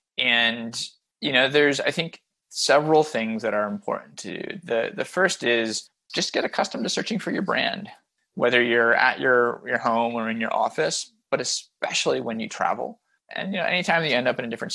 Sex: male